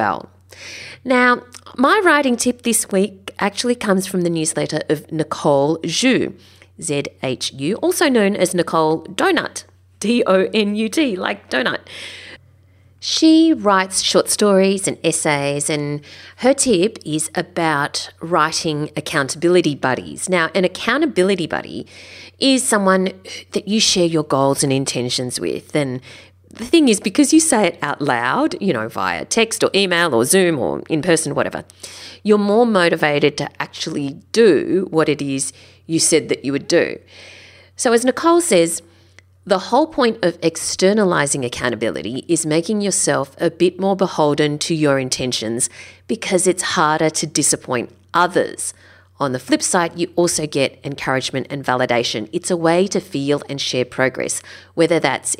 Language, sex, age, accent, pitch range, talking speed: English, female, 40-59, Australian, 135-200 Hz, 145 wpm